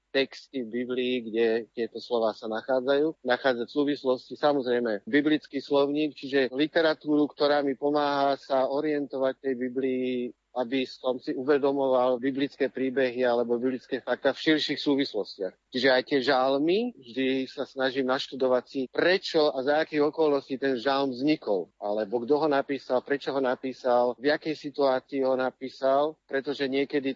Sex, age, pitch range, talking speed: male, 50-69, 120-140 Hz, 145 wpm